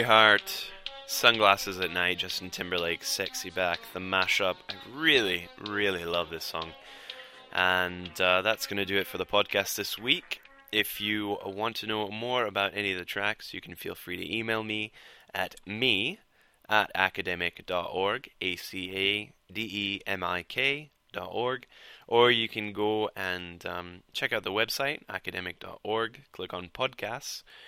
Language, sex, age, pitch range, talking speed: English, male, 20-39, 90-110 Hz, 140 wpm